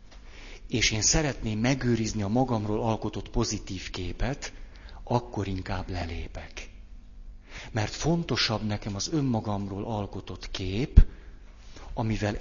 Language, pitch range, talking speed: Hungarian, 95-120 Hz, 95 wpm